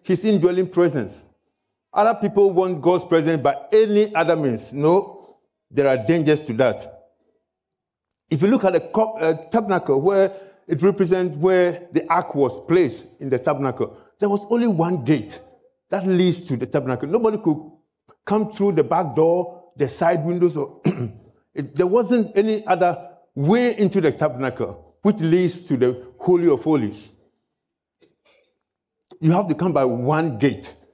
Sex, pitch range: male, 150-200 Hz